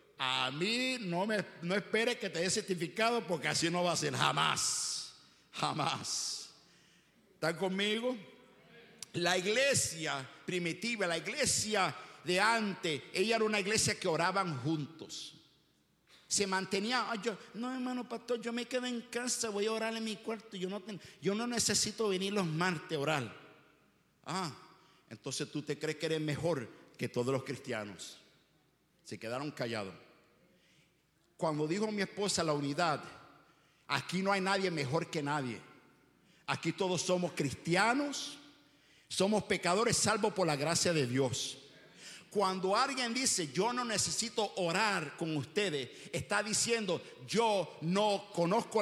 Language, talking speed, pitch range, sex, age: English, 145 wpm, 165-230 Hz, male, 50-69